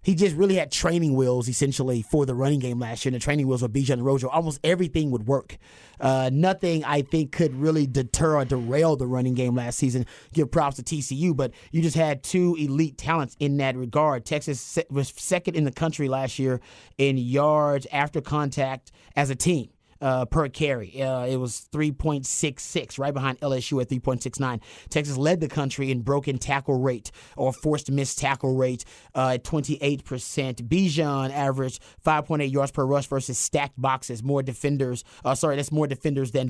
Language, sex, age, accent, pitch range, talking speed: English, male, 30-49, American, 130-155 Hz, 185 wpm